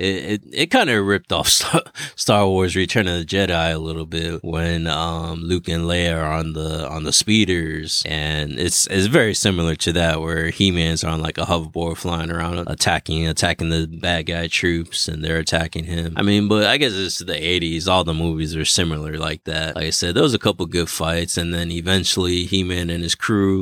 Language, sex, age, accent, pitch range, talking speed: English, male, 20-39, American, 80-95 Hz, 210 wpm